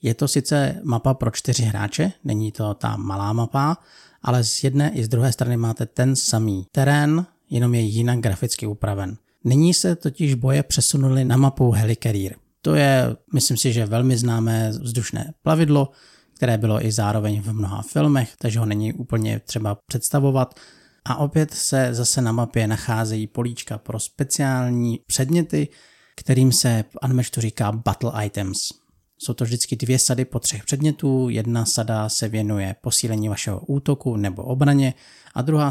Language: Czech